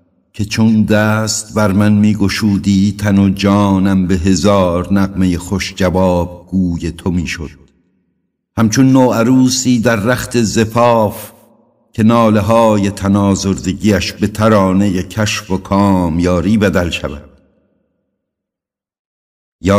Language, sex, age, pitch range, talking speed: Persian, male, 60-79, 90-105 Hz, 110 wpm